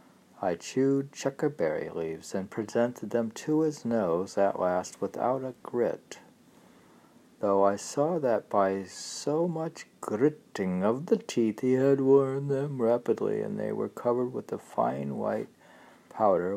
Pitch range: 100-130 Hz